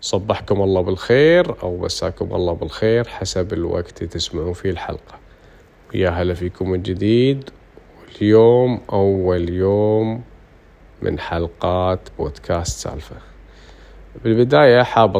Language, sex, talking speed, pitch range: Arabic, male, 105 wpm, 90-110 Hz